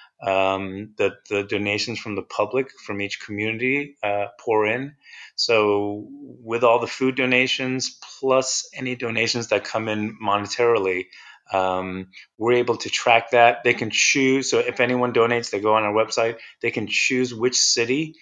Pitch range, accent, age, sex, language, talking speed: 100-125 Hz, American, 30-49, male, English, 160 wpm